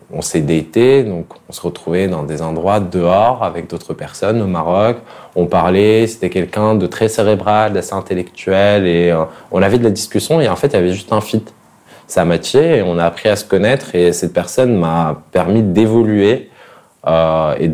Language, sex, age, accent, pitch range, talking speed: French, male, 20-39, French, 85-105 Hz, 195 wpm